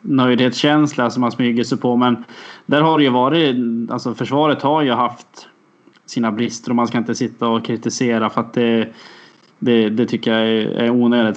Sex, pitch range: male, 120-140 Hz